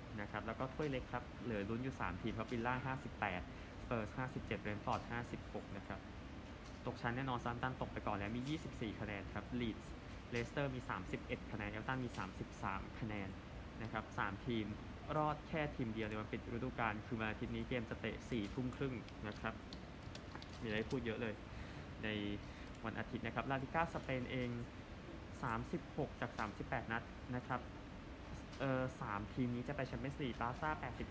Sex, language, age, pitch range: male, Thai, 20-39, 105-130 Hz